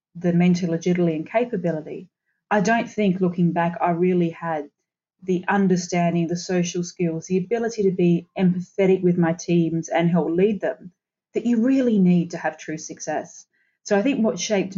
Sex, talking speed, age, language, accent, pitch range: female, 175 wpm, 30-49, English, Australian, 175-215 Hz